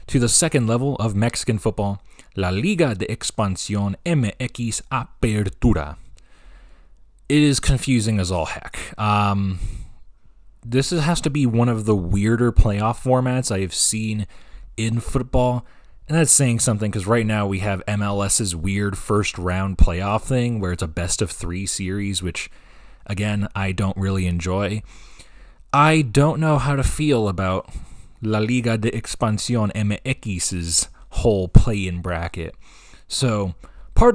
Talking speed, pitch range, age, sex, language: 135 wpm, 95-120 Hz, 20-39, male, English